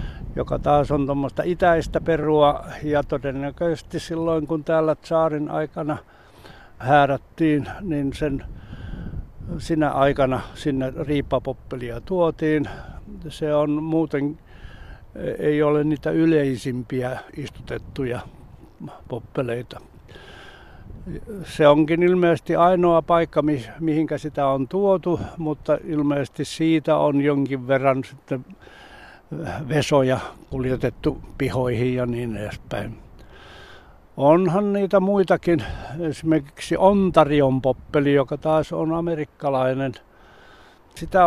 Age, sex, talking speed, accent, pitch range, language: 60-79, male, 90 wpm, native, 130-160 Hz, Finnish